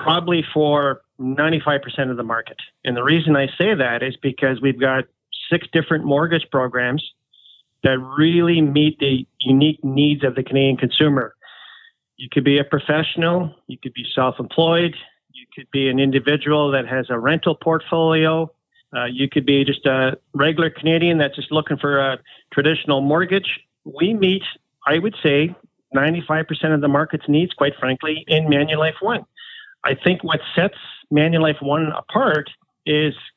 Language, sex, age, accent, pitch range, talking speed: English, male, 40-59, American, 135-165 Hz, 155 wpm